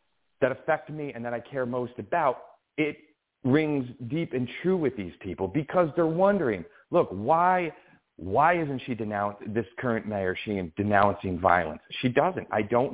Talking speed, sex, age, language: 170 wpm, male, 40-59, English